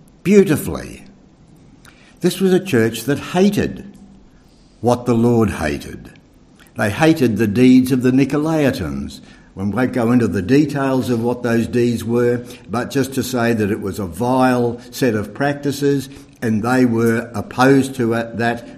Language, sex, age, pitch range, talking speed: English, male, 60-79, 105-135 Hz, 155 wpm